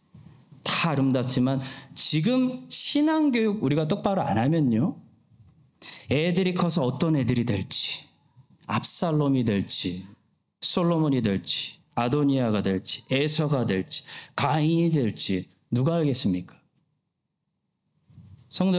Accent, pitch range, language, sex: native, 110-170 Hz, Korean, male